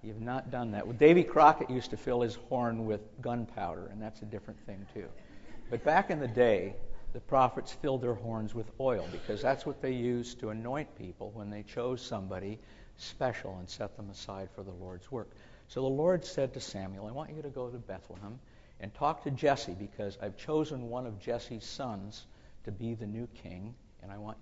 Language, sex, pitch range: English, male, 105-135 Hz